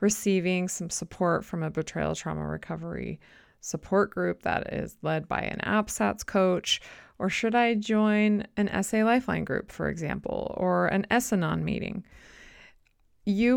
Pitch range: 165-210 Hz